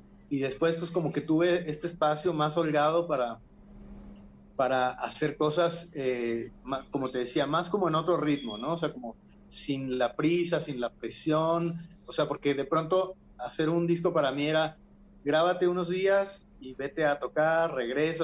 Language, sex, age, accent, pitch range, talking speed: Spanish, male, 30-49, Mexican, 130-170 Hz, 175 wpm